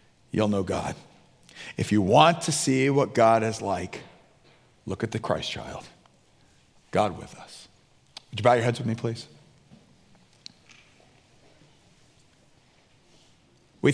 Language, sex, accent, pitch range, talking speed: English, male, American, 105-145 Hz, 125 wpm